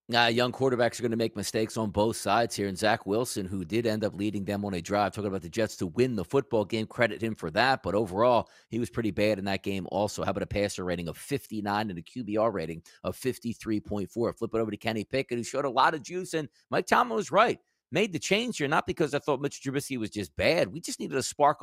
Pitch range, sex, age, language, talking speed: 105-140 Hz, male, 50-69, English, 265 wpm